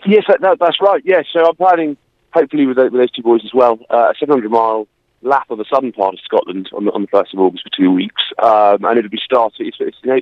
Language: English